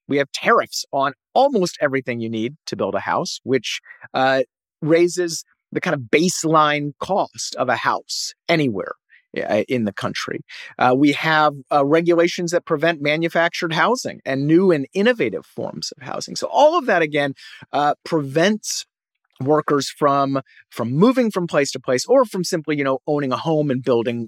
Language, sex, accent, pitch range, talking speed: English, male, American, 130-175 Hz, 170 wpm